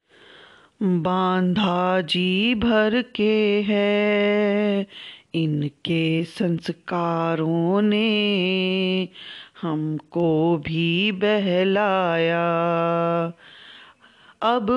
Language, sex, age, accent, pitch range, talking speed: Hindi, female, 30-49, native, 170-220 Hz, 50 wpm